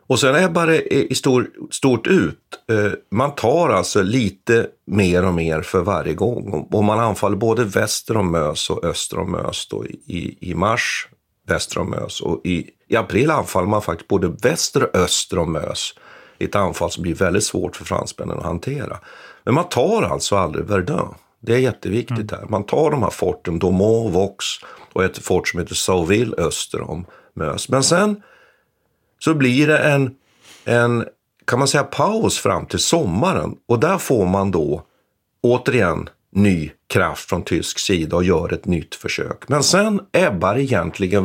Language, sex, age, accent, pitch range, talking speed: Swedish, male, 50-69, native, 100-140 Hz, 175 wpm